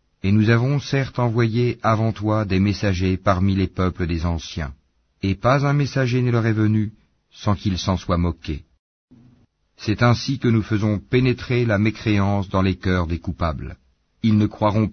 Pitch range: 90-110 Hz